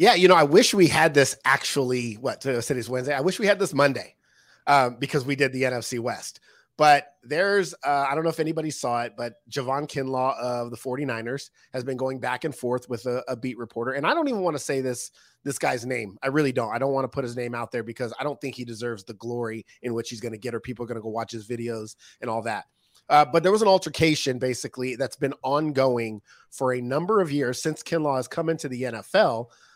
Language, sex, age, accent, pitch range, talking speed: English, male, 30-49, American, 125-155 Hz, 250 wpm